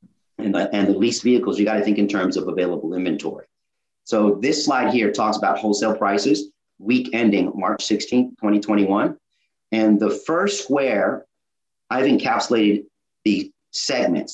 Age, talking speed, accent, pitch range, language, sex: 40-59, 145 wpm, American, 100-130 Hz, English, male